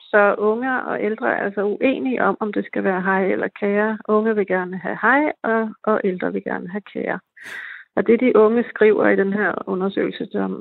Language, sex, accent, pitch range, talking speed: Danish, female, native, 195-220 Hz, 210 wpm